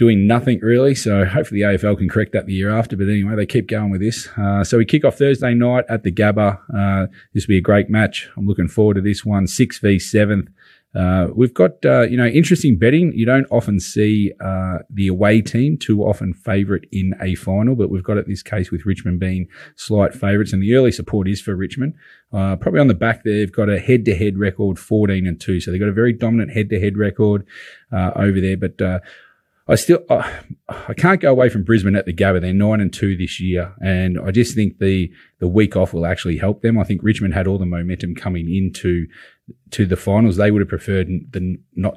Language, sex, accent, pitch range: English, male, Australian, 90-110 Hz